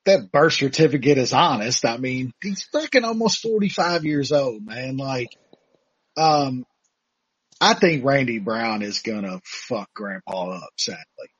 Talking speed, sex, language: 140 wpm, male, English